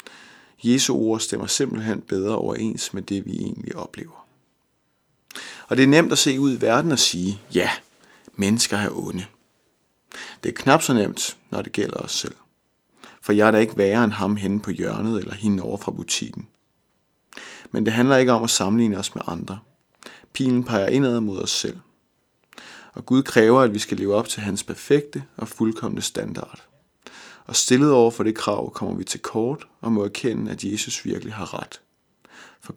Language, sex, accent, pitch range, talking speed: Danish, male, native, 100-125 Hz, 185 wpm